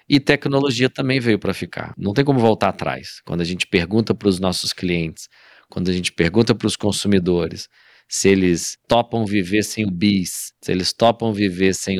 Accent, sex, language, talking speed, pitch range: Brazilian, male, Portuguese, 190 wpm, 90-110 Hz